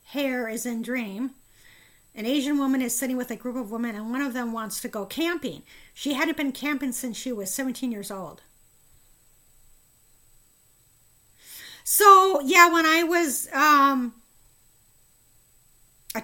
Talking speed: 145 wpm